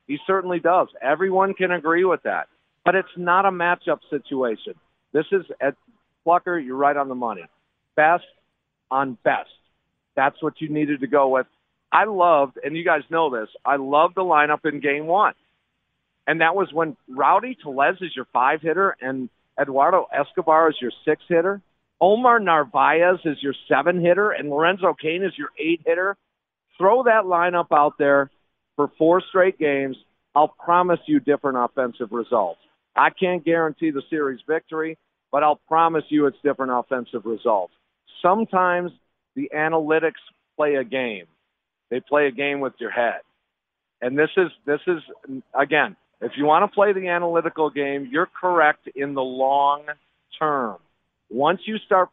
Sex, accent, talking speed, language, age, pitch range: male, American, 160 wpm, English, 50-69, 140-180 Hz